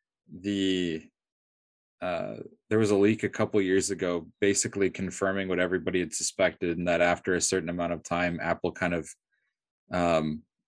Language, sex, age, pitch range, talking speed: English, male, 20-39, 85-110 Hz, 155 wpm